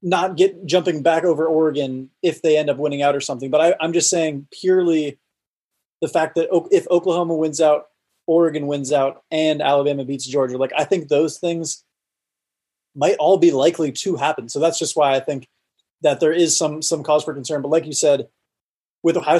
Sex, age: male, 20-39